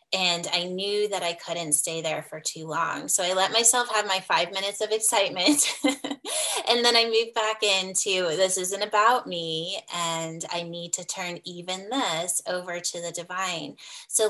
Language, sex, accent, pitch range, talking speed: English, female, American, 170-210 Hz, 180 wpm